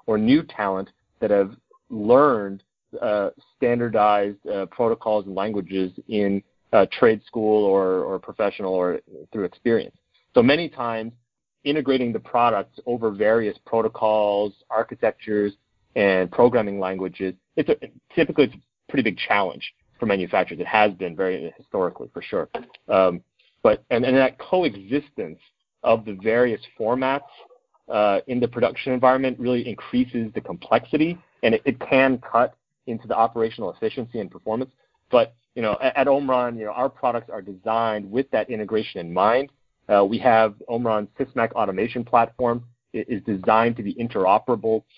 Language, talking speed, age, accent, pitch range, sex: English, 150 wpm, 30-49, American, 105-125 Hz, male